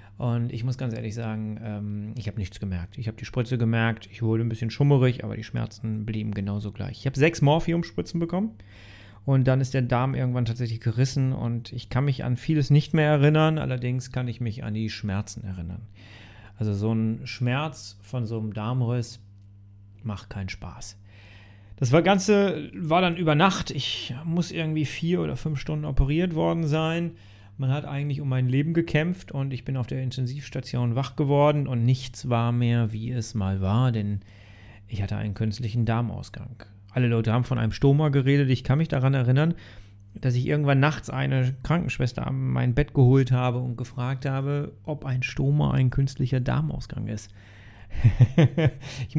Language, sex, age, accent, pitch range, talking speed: German, male, 40-59, German, 110-145 Hz, 180 wpm